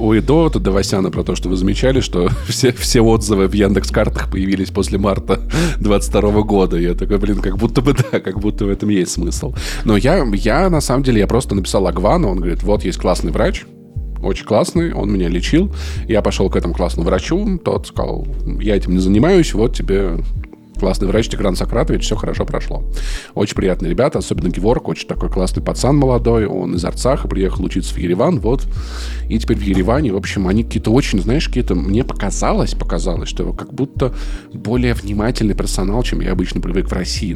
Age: 20-39